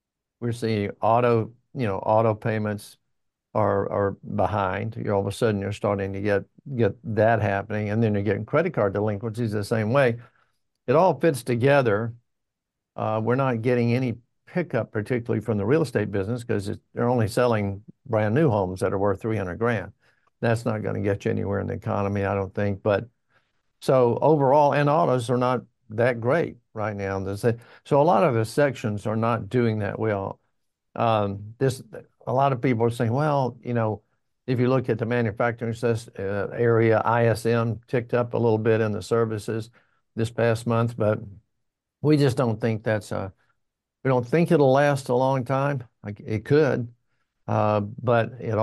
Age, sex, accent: 60-79, male, American